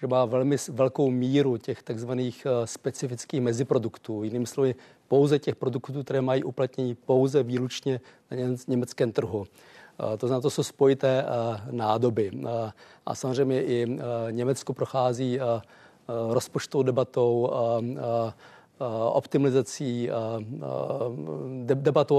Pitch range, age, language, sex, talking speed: 120-140 Hz, 40-59, Czech, male, 100 wpm